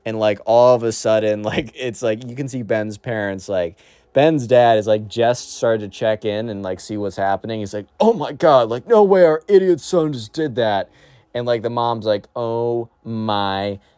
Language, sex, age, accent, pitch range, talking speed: English, male, 20-39, American, 100-130 Hz, 215 wpm